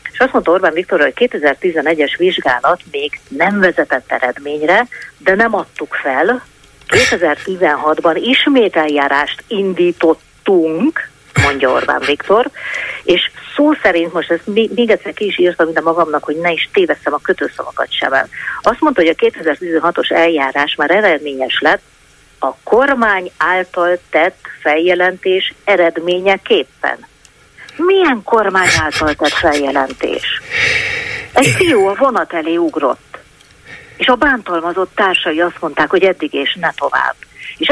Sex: female